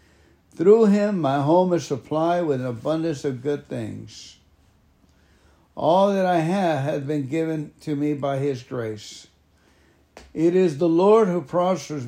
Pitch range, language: 105-165 Hz, English